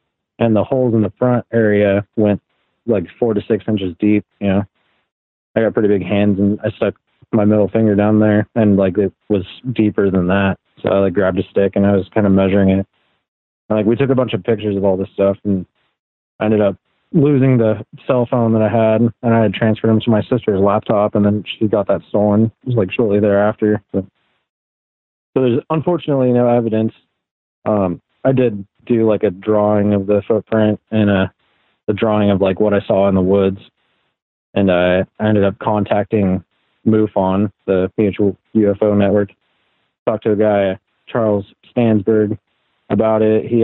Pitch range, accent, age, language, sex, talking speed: 100-110 Hz, American, 30-49, English, male, 190 wpm